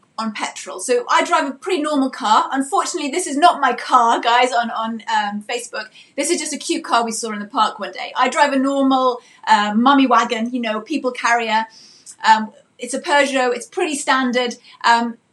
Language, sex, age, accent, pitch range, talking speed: English, female, 30-49, British, 230-300 Hz, 205 wpm